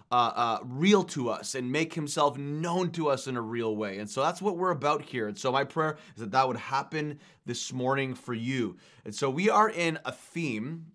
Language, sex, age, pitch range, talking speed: English, male, 20-39, 125-155 Hz, 230 wpm